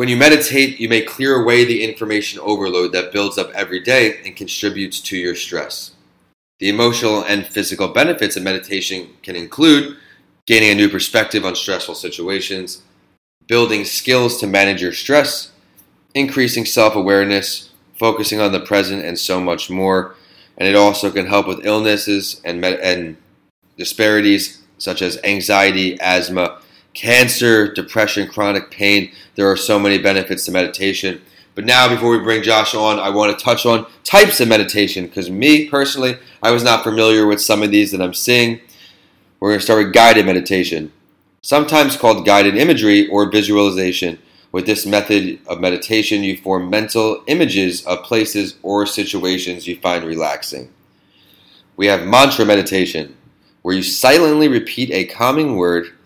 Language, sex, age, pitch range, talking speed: English, male, 30-49, 95-115 Hz, 155 wpm